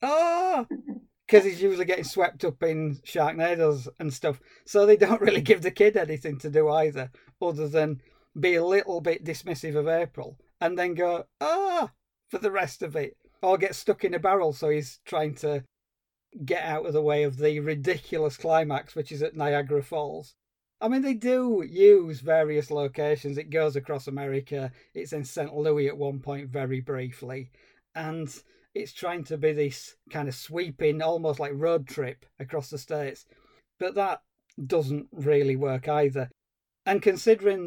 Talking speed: 170 wpm